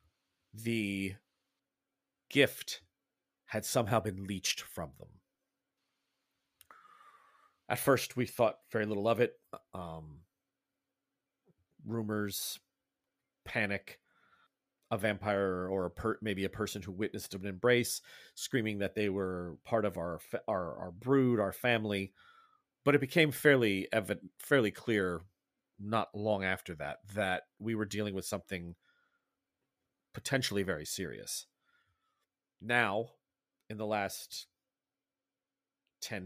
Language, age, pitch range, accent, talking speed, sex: English, 40-59, 95-115 Hz, American, 115 wpm, male